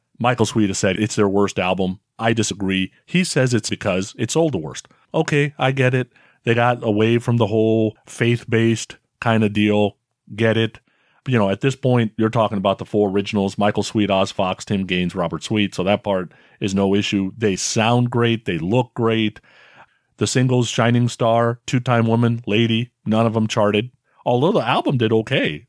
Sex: male